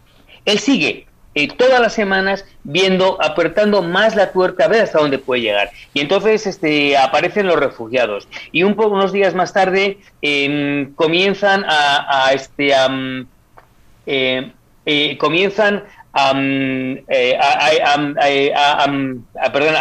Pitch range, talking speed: 140-190 Hz, 105 wpm